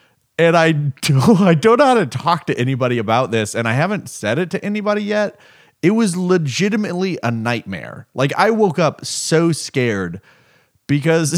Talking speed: 175 wpm